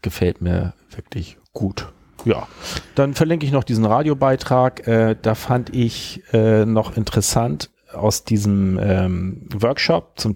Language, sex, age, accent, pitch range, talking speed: German, male, 40-59, German, 110-140 Hz, 135 wpm